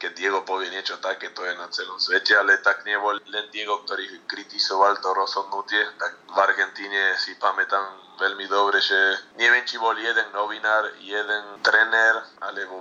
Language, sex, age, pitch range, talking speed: Slovak, male, 20-39, 100-110 Hz, 165 wpm